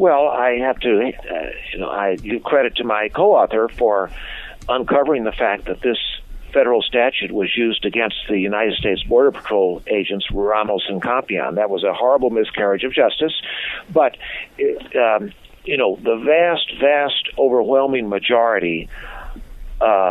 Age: 50-69